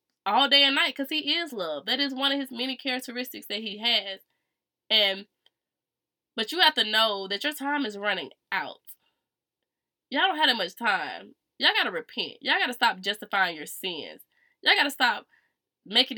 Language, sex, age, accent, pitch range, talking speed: English, female, 20-39, American, 200-260 Hz, 195 wpm